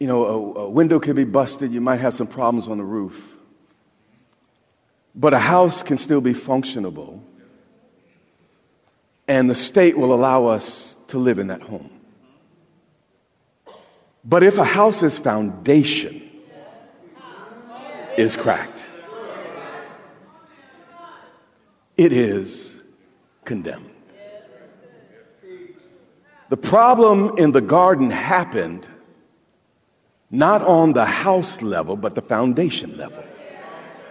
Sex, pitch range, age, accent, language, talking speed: male, 125-205 Hz, 50-69, American, English, 105 wpm